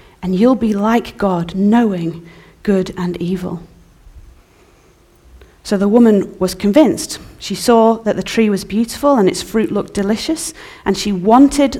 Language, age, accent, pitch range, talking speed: English, 30-49, British, 185-240 Hz, 145 wpm